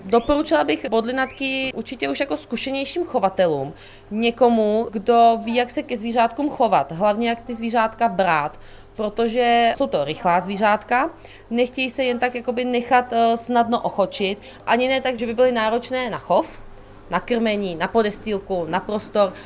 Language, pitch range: Czech, 205-235 Hz